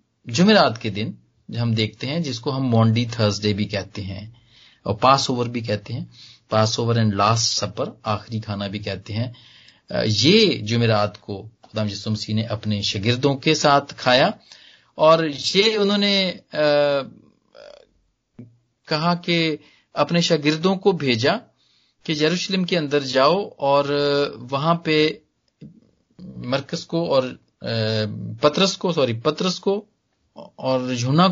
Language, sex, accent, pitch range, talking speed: Hindi, male, native, 110-150 Hz, 125 wpm